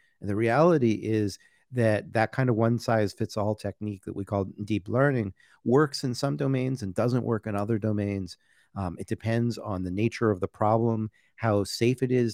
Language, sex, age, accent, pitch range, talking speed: English, male, 40-59, American, 100-120 Hz, 185 wpm